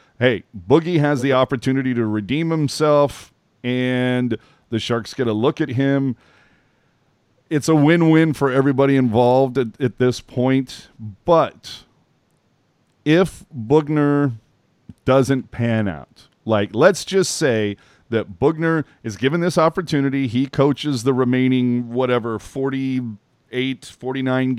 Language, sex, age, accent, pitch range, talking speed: English, male, 40-59, American, 110-135 Hz, 120 wpm